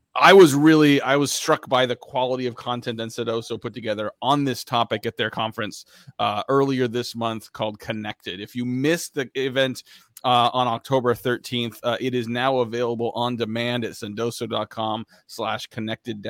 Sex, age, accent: male, 30-49, American